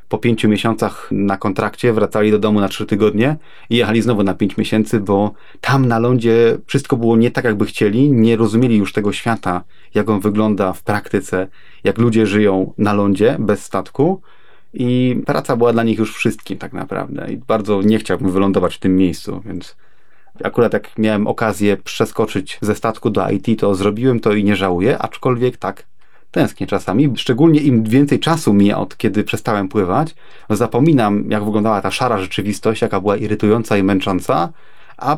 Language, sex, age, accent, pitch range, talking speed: Polish, male, 30-49, native, 100-120 Hz, 175 wpm